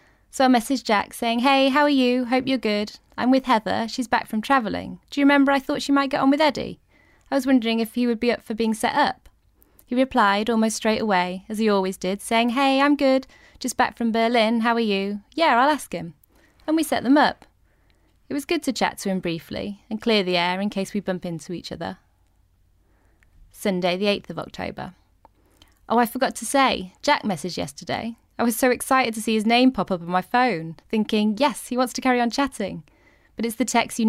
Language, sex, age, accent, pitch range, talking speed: English, female, 20-39, British, 185-240 Hz, 225 wpm